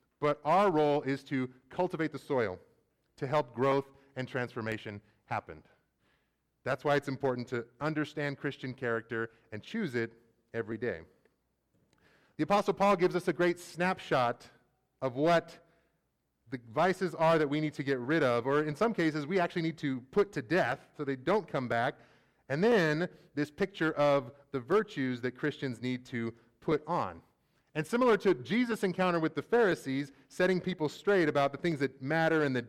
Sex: male